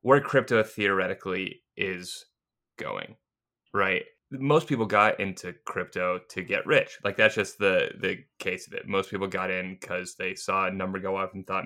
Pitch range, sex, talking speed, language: 95-105 Hz, male, 180 wpm, English